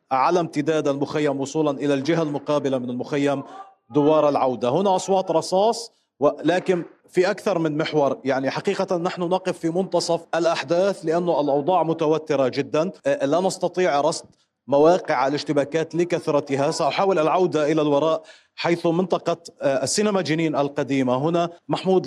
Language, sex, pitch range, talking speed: Arabic, male, 150-180 Hz, 130 wpm